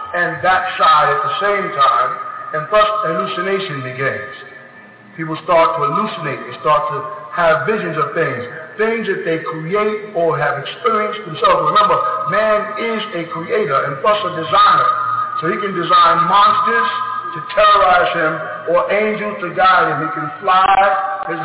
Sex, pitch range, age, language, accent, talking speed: male, 155-210 Hz, 50-69, English, American, 155 wpm